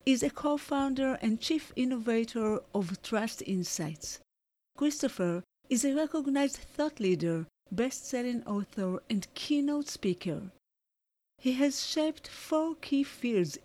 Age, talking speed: 40-59, 115 wpm